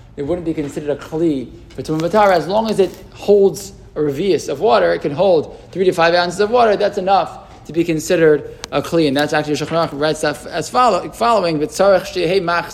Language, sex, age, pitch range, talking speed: English, male, 20-39, 145-180 Hz, 205 wpm